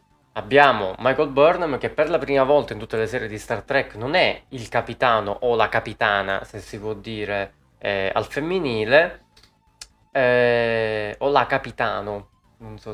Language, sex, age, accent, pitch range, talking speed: Italian, male, 20-39, native, 110-150 Hz, 160 wpm